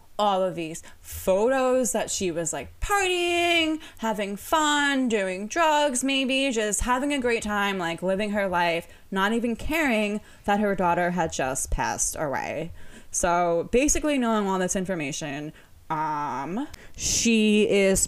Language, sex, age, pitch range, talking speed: English, female, 20-39, 170-245 Hz, 140 wpm